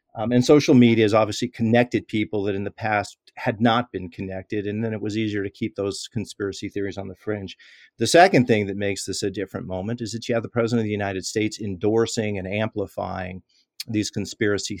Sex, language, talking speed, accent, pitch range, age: male, English, 215 wpm, American, 105-125 Hz, 40-59